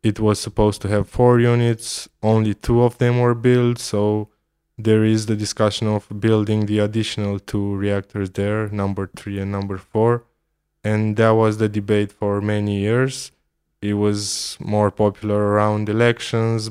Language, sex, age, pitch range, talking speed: English, male, 20-39, 105-115 Hz, 160 wpm